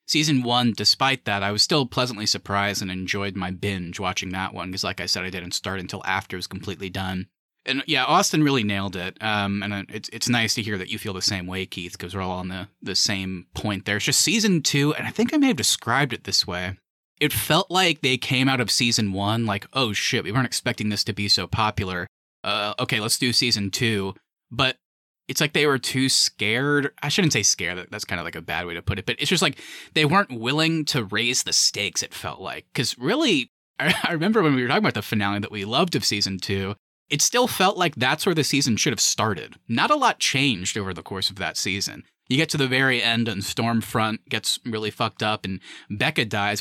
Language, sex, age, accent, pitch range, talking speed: English, male, 30-49, American, 100-135 Hz, 240 wpm